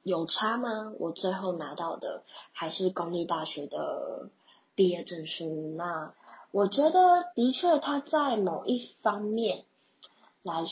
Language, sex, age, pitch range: Chinese, female, 20-39, 170-265 Hz